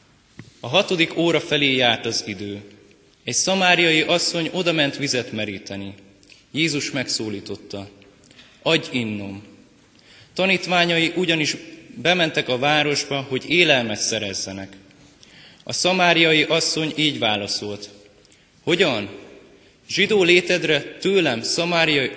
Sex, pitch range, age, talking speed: male, 115-160 Hz, 20-39, 95 wpm